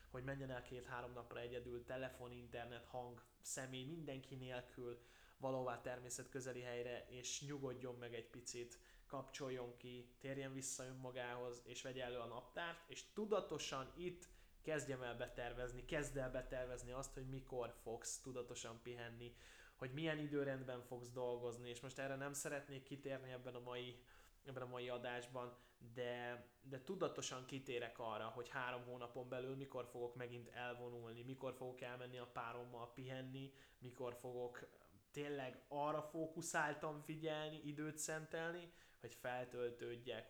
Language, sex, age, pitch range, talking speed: Hungarian, male, 20-39, 125-140 Hz, 140 wpm